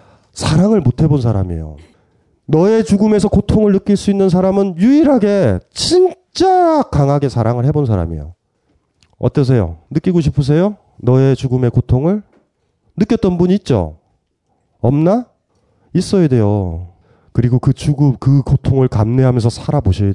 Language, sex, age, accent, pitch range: Korean, male, 30-49, native, 105-155 Hz